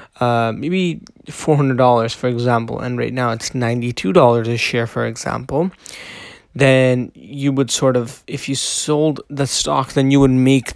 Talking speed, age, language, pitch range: 155 wpm, 20-39, English, 125-155 Hz